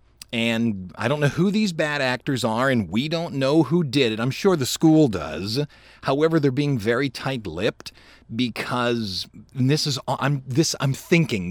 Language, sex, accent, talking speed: English, male, American, 175 wpm